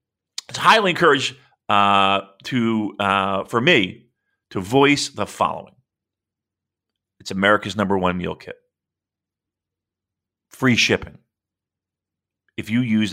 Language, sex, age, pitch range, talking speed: English, male, 40-59, 100-140 Hz, 105 wpm